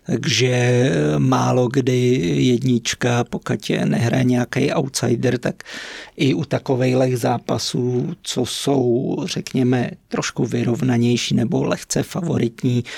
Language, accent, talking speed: Czech, native, 100 wpm